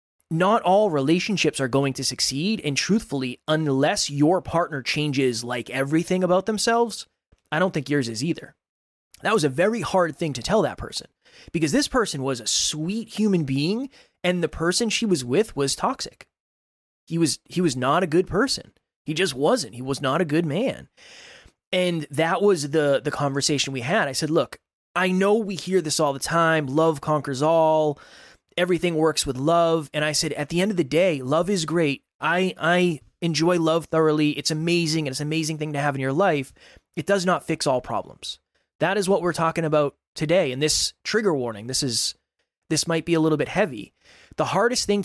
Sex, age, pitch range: male, 20-39, 140-180 Hz